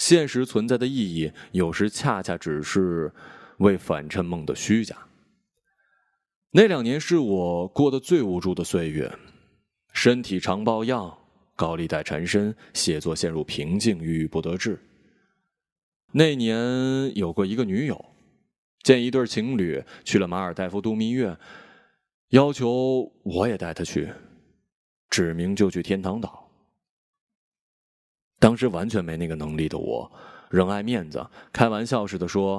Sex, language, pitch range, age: male, Chinese, 95-135 Hz, 20-39